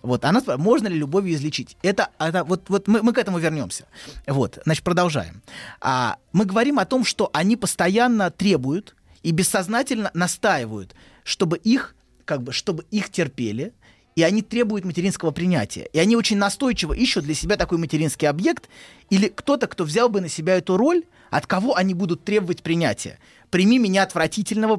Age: 20-39